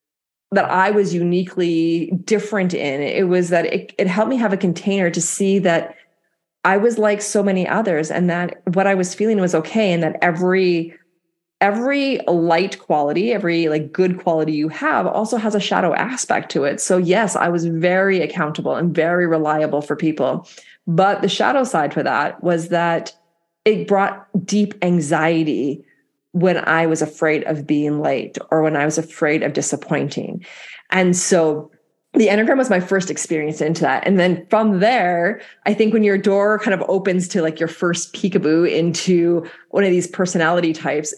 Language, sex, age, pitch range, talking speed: English, female, 30-49, 165-200 Hz, 180 wpm